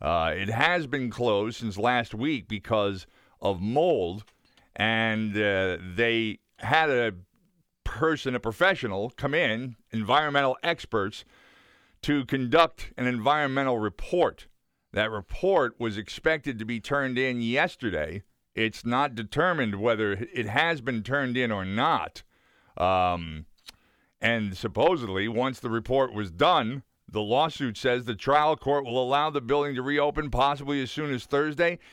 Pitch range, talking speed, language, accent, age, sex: 110-140 Hz, 135 wpm, English, American, 50-69, male